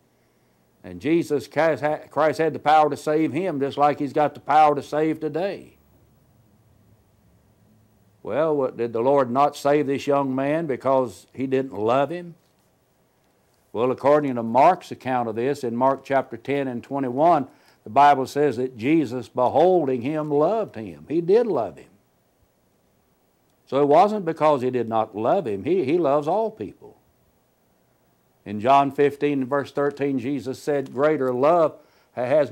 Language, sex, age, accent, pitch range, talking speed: English, male, 60-79, American, 130-150 Hz, 155 wpm